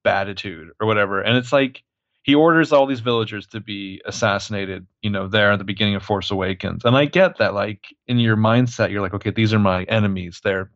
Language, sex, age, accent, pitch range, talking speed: English, male, 30-49, American, 105-135 Hz, 225 wpm